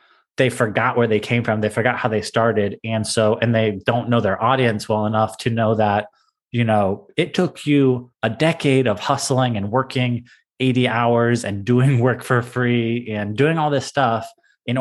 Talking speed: 195 wpm